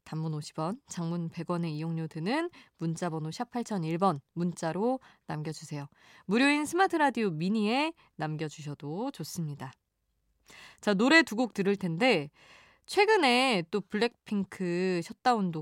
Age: 20-39